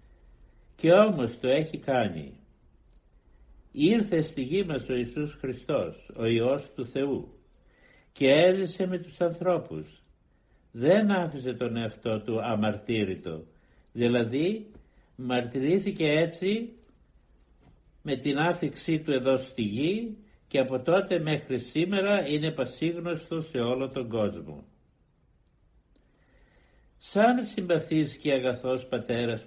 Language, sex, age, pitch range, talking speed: Greek, male, 60-79, 115-160 Hz, 110 wpm